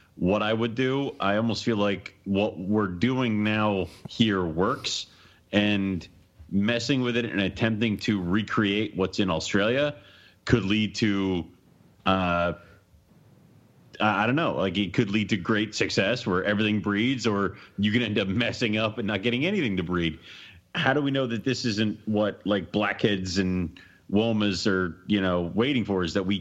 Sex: male